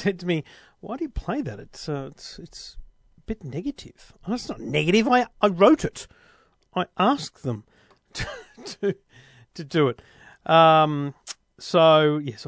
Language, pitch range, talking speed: English, 135-180 Hz, 165 wpm